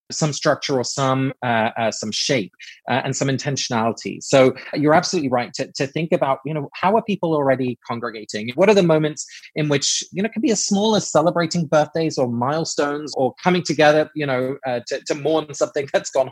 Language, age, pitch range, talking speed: English, 20-39, 120-150 Hz, 215 wpm